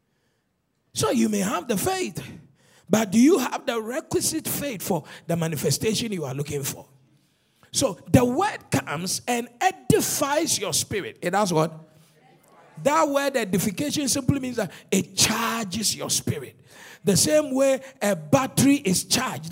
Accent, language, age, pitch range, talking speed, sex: Nigerian, English, 50-69, 165-260 Hz, 150 wpm, male